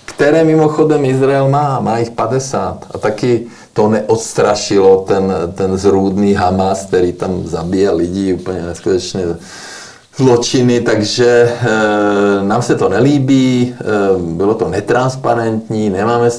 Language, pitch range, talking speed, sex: Czech, 95-115 Hz, 115 wpm, male